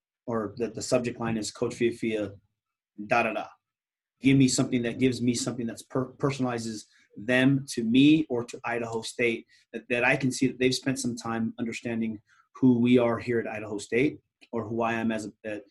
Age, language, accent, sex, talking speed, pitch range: 30-49, English, American, male, 195 wpm, 115-135 Hz